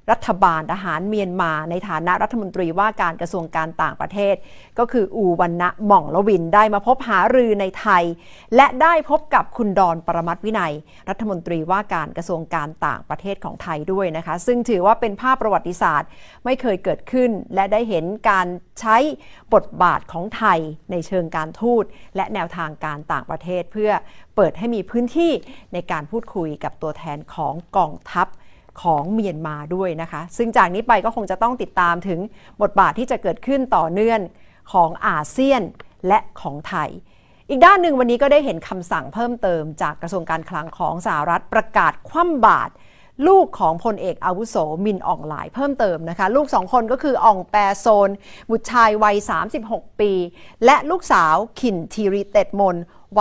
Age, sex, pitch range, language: 50-69, female, 170-235 Hz, Thai